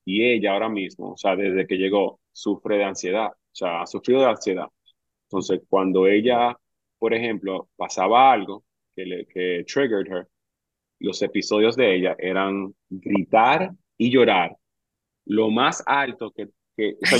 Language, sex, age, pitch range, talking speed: Spanish, male, 30-49, 100-135 Hz, 155 wpm